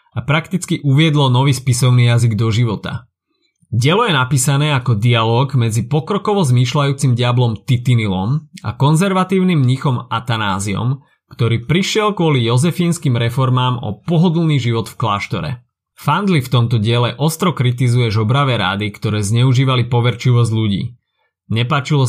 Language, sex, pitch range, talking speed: Slovak, male, 115-140 Hz, 120 wpm